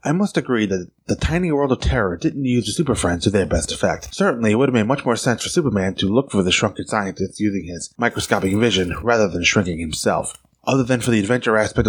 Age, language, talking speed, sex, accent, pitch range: 20-39, English, 240 wpm, male, American, 100-120 Hz